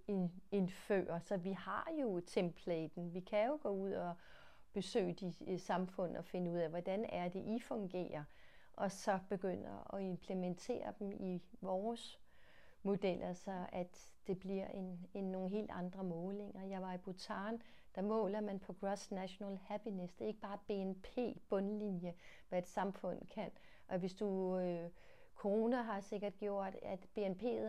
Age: 30-49